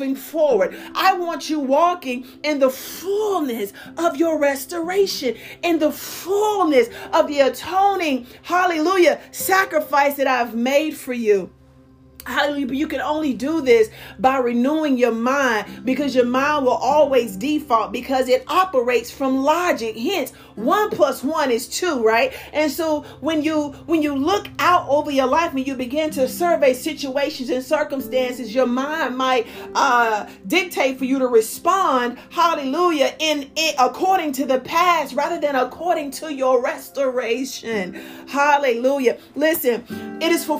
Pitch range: 255-310 Hz